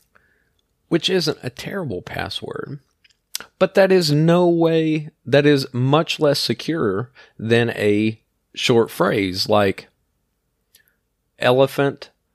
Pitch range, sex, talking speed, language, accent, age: 100-150 Hz, male, 100 wpm, English, American, 30-49